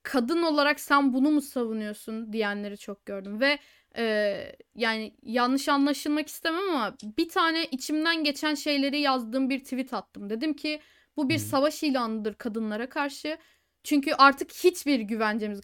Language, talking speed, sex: Turkish, 140 wpm, female